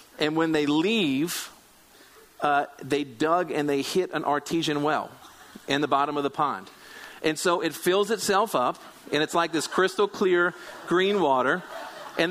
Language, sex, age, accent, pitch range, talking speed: English, male, 40-59, American, 150-185 Hz, 165 wpm